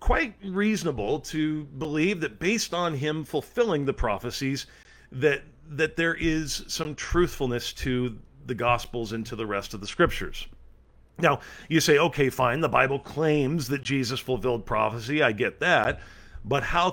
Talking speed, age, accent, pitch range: 155 wpm, 40-59, American, 120-160 Hz